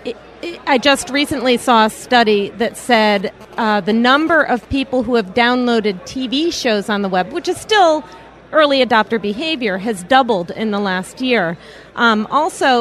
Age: 40-59